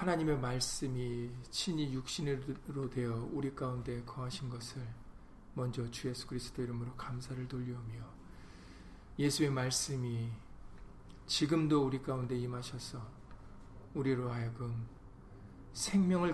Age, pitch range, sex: 40-59, 120-140 Hz, male